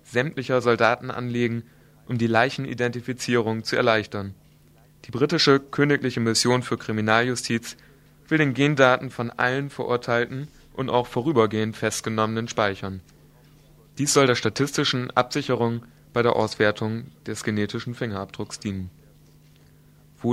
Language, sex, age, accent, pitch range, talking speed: German, male, 30-49, German, 110-130 Hz, 110 wpm